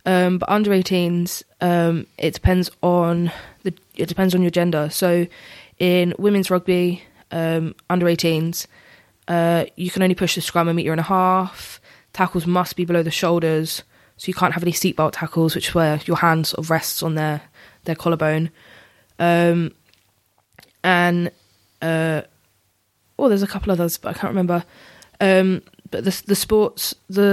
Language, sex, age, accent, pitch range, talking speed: English, female, 20-39, British, 165-185 Hz, 165 wpm